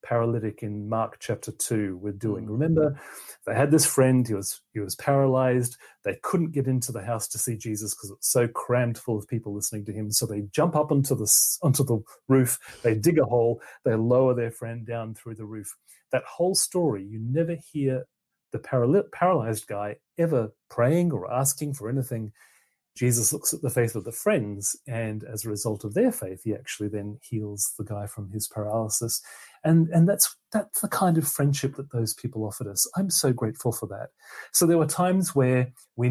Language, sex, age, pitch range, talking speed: English, male, 30-49, 110-155 Hz, 205 wpm